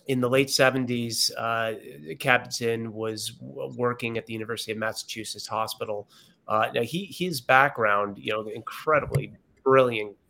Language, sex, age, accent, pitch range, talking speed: English, male, 30-49, American, 110-125 Hz, 135 wpm